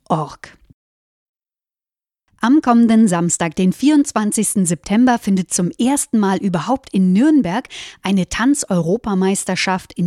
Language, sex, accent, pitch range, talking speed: German, female, German, 185-240 Hz, 95 wpm